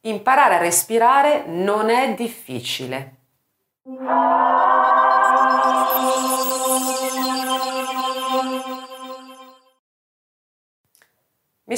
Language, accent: Italian, native